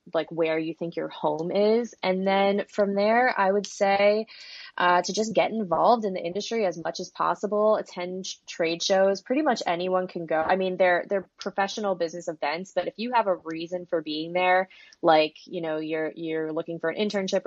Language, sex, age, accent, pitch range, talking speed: English, female, 20-39, American, 160-195 Hz, 205 wpm